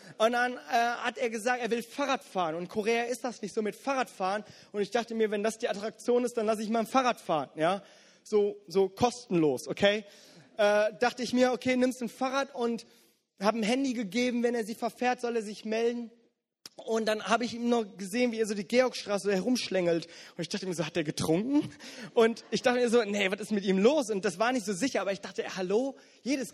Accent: German